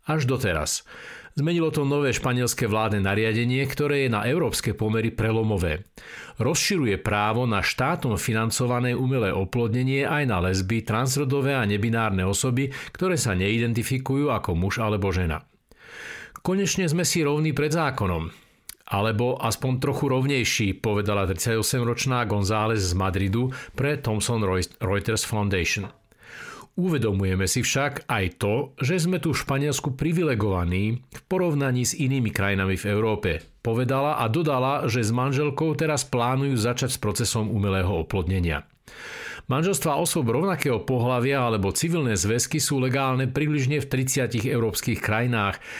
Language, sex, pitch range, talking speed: Slovak, male, 105-140 Hz, 130 wpm